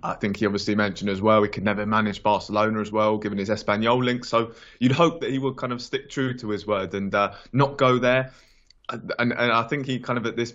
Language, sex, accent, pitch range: English, male, British, 105-120 Hz